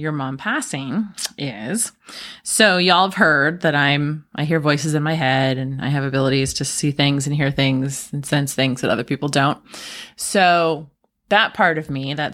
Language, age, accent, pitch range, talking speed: English, 20-39, American, 150-200 Hz, 190 wpm